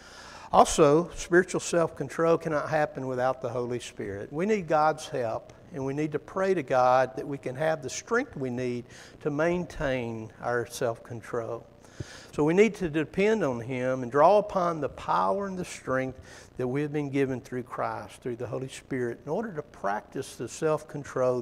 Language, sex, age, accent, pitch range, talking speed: English, male, 60-79, American, 120-160 Hz, 180 wpm